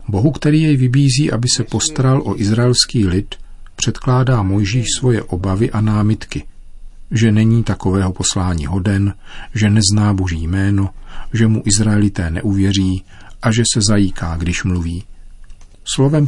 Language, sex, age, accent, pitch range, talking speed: Czech, male, 40-59, native, 95-115 Hz, 135 wpm